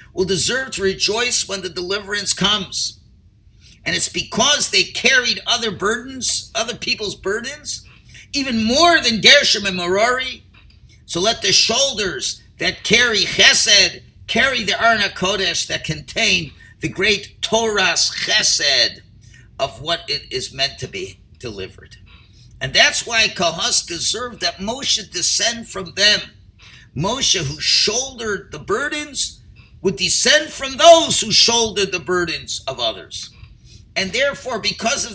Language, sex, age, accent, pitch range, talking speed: English, male, 50-69, American, 160-230 Hz, 135 wpm